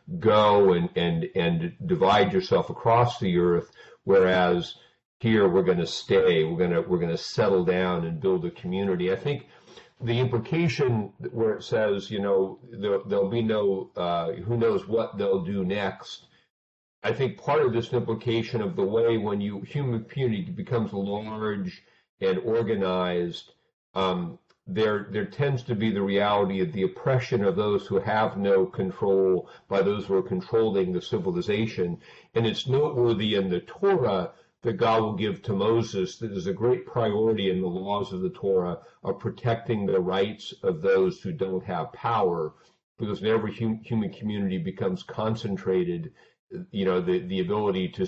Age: 50-69